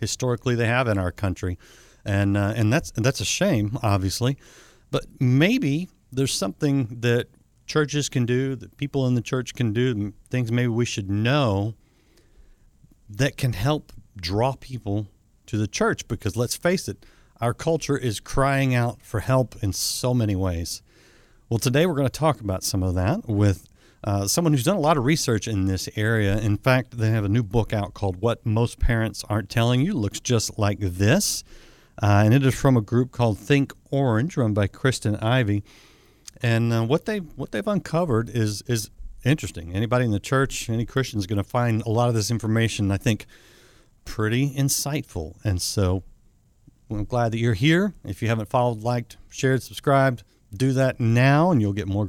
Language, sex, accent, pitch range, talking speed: English, male, American, 105-130 Hz, 190 wpm